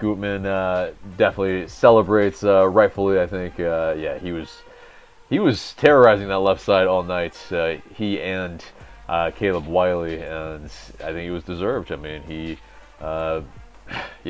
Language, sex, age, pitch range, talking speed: English, male, 30-49, 85-110 Hz, 150 wpm